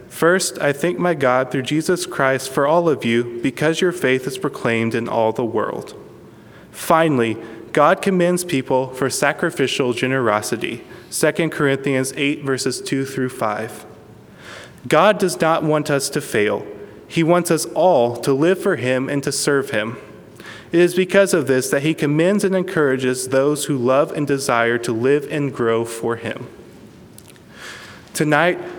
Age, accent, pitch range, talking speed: 20-39, American, 125-165 Hz, 160 wpm